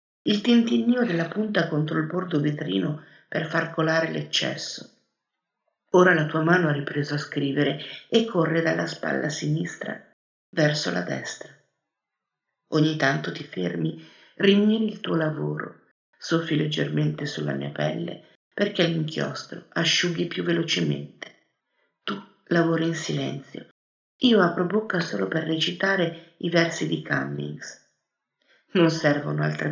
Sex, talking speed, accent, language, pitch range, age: female, 125 wpm, native, Italian, 145-175 Hz, 50-69